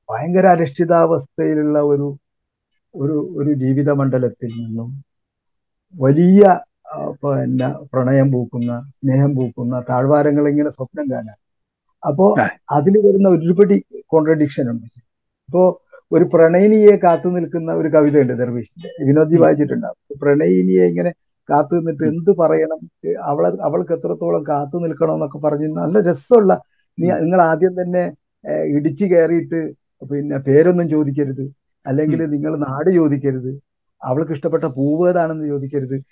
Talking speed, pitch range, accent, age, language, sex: 105 wpm, 135-180 Hz, native, 50-69, Malayalam, male